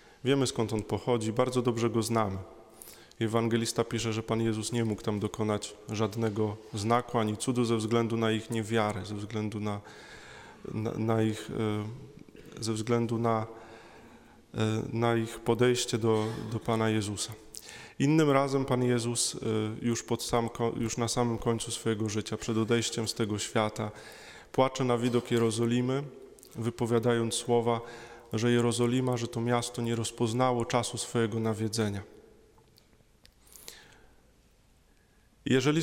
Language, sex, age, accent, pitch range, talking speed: Polish, male, 20-39, native, 110-120 Hz, 130 wpm